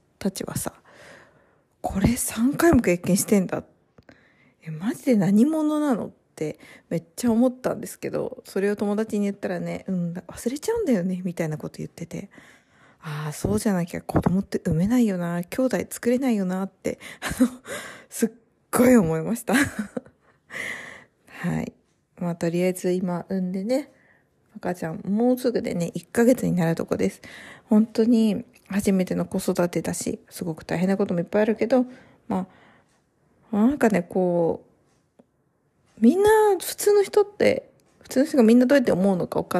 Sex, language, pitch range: female, Japanese, 185-260 Hz